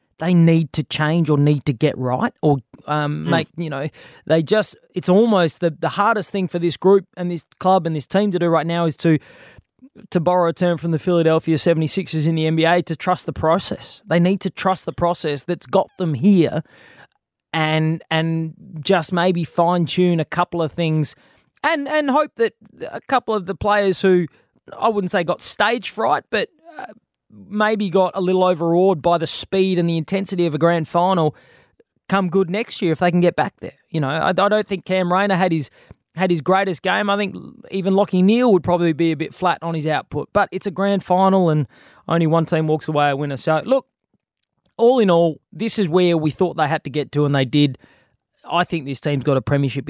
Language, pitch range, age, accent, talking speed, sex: English, 155-190 Hz, 20-39, Australian, 215 wpm, male